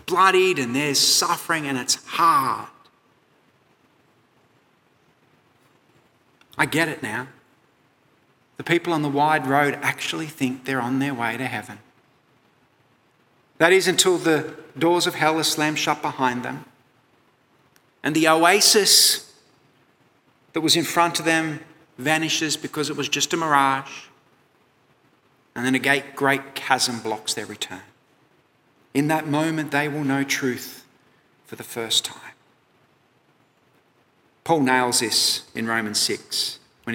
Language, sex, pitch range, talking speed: English, male, 125-155 Hz, 130 wpm